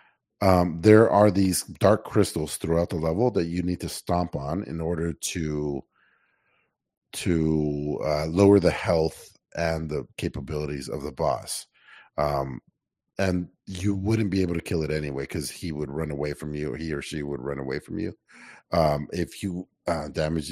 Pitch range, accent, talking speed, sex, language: 80-105 Hz, American, 175 wpm, male, English